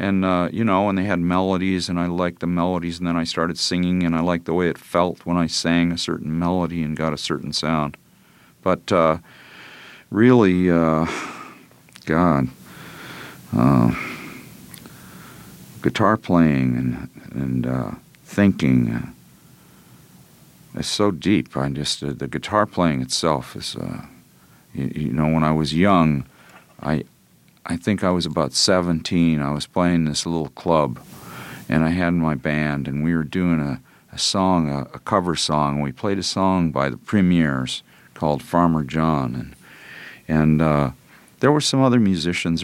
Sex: male